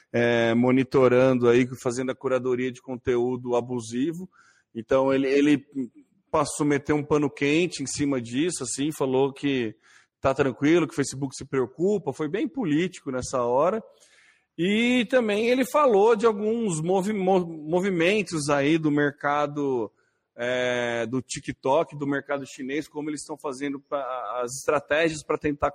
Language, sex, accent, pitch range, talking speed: Portuguese, male, Brazilian, 130-175 Hz, 135 wpm